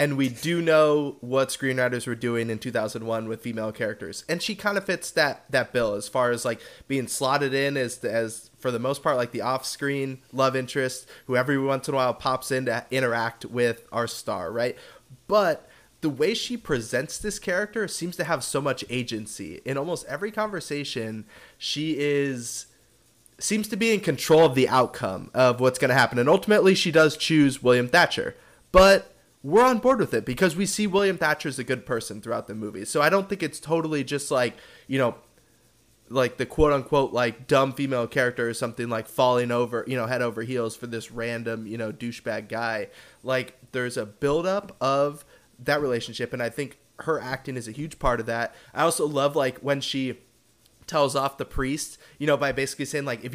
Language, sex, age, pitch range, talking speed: English, male, 20-39, 120-155 Hz, 205 wpm